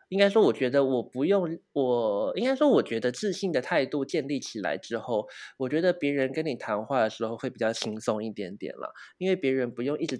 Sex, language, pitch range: male, Chinese, 125-195 Hz